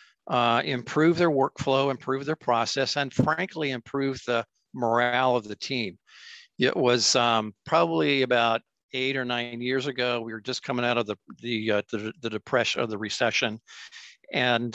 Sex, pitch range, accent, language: male, 115-135 Hz, American, English